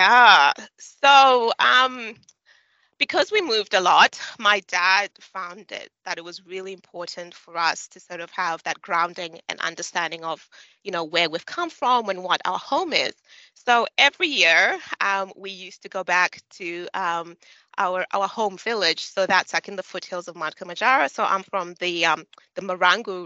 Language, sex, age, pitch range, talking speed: English, female, 20-39, 170-205 Hz, 180 wpm